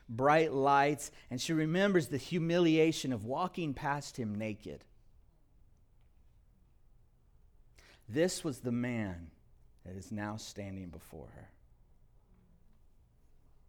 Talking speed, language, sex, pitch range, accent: 95 wpm, English, male, 105-140 Hz, American